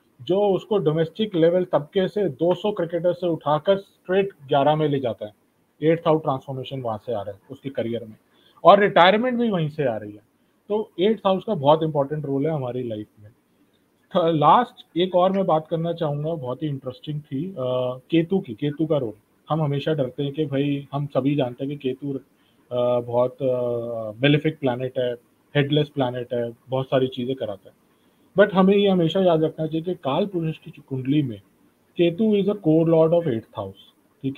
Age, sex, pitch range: 30-49, male, 135-185 Hz